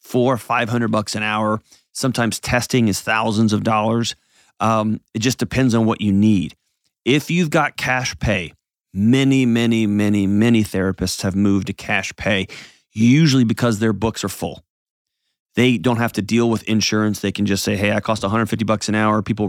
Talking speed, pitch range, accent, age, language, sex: 190 wpm, 105-125 Hz, American, 30-49, English, male